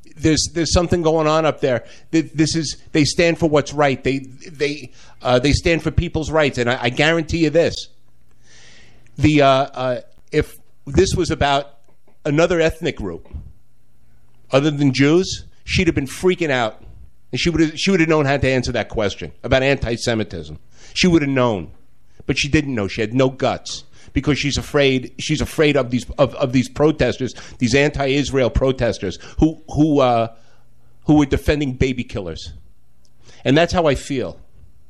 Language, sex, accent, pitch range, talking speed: English, male, American, 125-155 Hz, 170 wpm